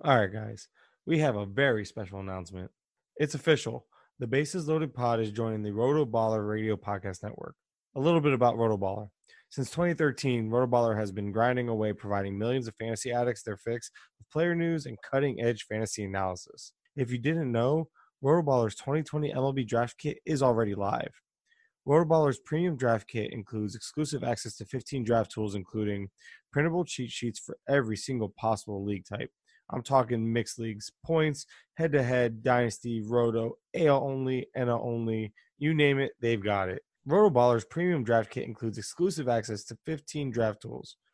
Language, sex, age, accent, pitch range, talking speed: English, male, 20-39, American, 110-140 Hz, 160 wpm